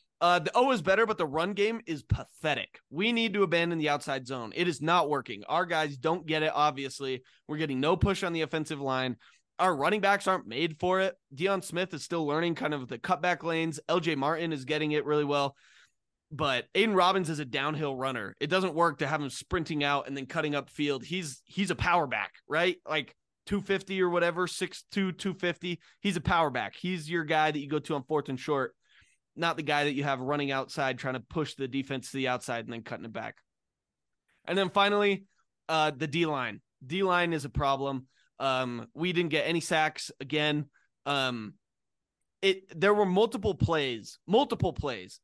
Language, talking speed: English, 205 wpm